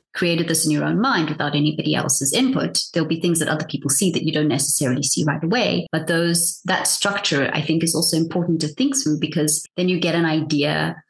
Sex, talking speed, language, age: female, 225 wpm, English, 30-49